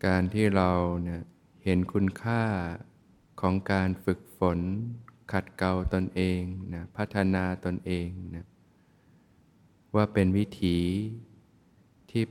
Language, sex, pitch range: Thai, male, 90-100 Hz